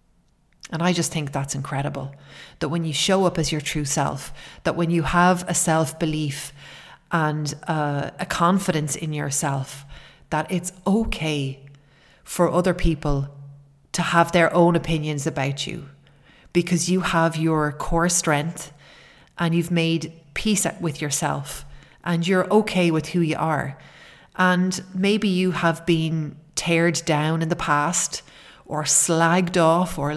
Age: 30-49